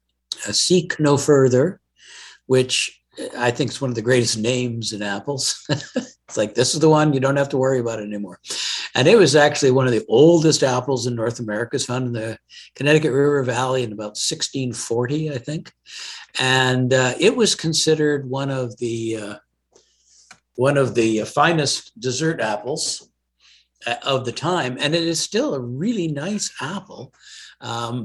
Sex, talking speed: male, 170 wpm